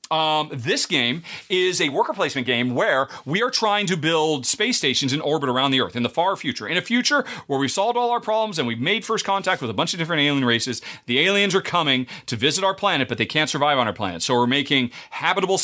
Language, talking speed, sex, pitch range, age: English, 250 wpm, male, 135-200 Hz, 40-59